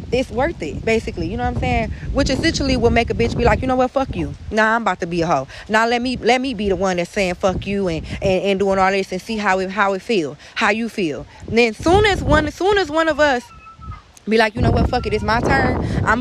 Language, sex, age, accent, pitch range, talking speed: English, female, 20-39, American, 190-250 Hz, 295 wpm